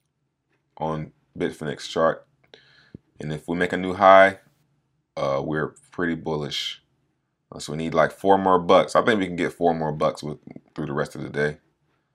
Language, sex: English, male